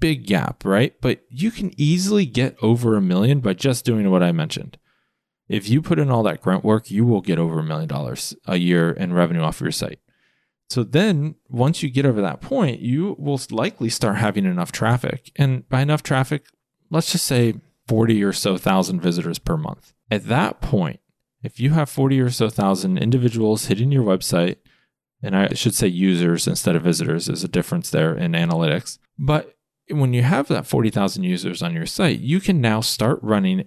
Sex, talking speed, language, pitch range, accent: male, 200 wpm, English, 100-155 Hz, American